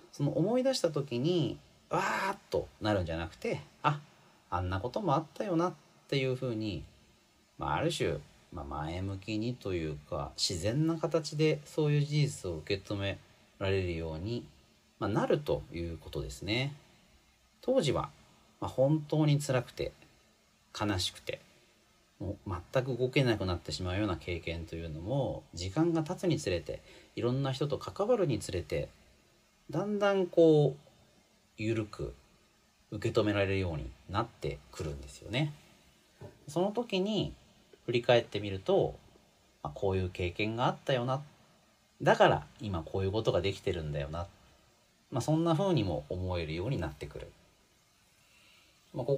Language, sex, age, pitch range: Japanese, male, 40-59, 90-150 Hz